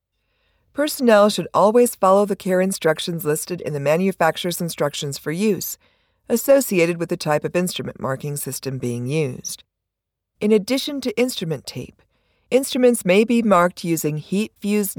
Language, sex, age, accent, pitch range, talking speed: English, female, 50-69, American, 145-210 Hz, 140 wpm